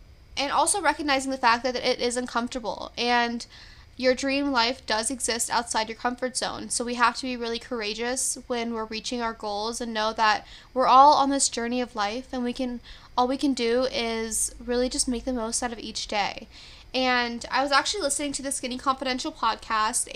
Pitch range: 230-260 Hz